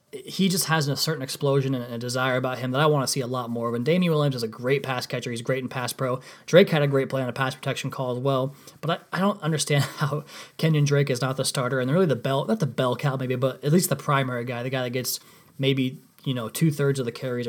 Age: 20-39